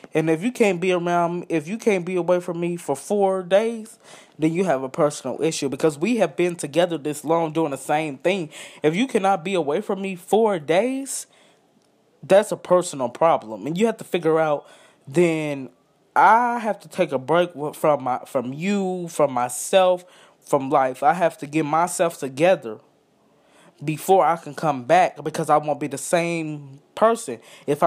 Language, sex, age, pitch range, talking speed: English, male, 20-39, 145-180 Hz, 185 wpm